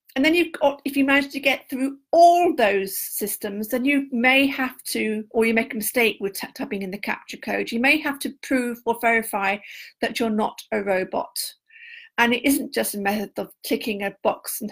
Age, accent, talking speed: 50-69, British, 210 wpm